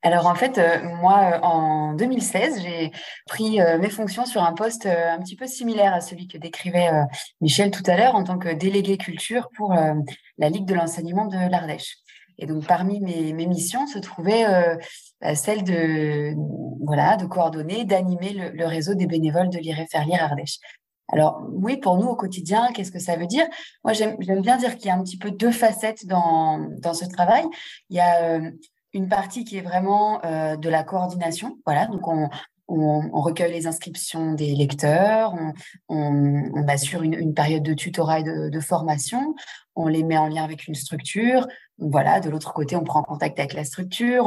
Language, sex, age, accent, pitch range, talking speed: French, female, 20-39, French, 155-200 Hz, 205 wpm